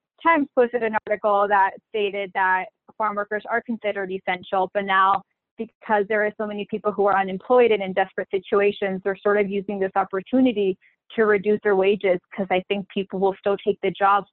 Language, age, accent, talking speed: English, 20-39, American, 195 wpm